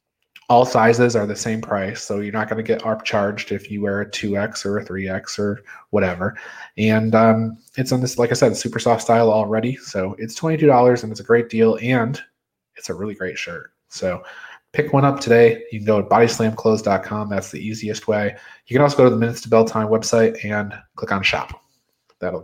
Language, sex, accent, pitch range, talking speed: English, male, American, 110-125 Hz, 215 wpm